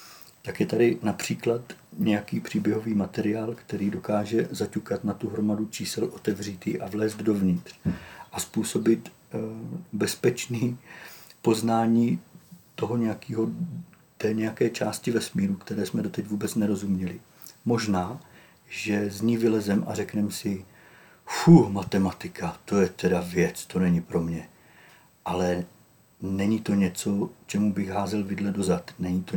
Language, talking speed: Czech, 125 wpm